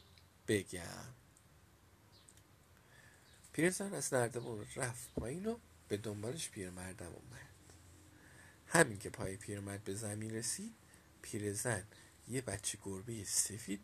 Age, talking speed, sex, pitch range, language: 50-69, 100 wpm, male, 95-125 Hz, Persian